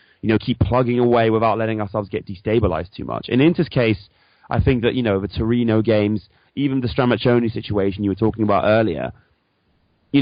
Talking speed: 195 wpm